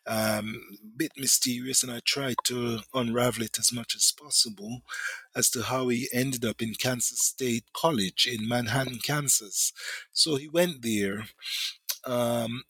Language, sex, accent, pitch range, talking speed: English, male, Nigerian, 110-130 Hz, 150 wpm